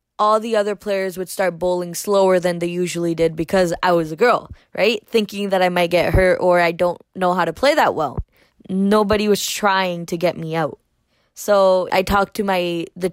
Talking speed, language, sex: 210 wpm, English, female